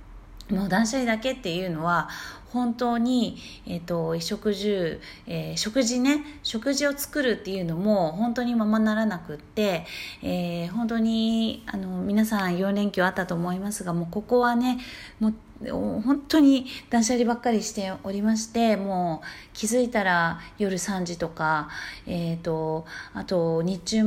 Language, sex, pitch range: Japanese, female, 170-230 Hz